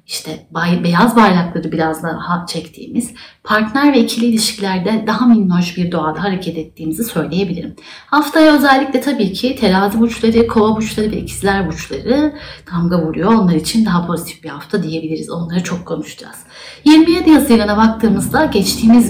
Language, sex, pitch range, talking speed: Turkish, female, 170-230 Hz, 140 wpm